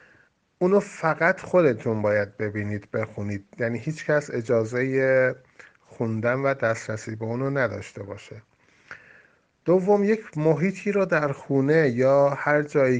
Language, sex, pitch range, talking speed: Persian, male, 120-150 Hz, 120 wpm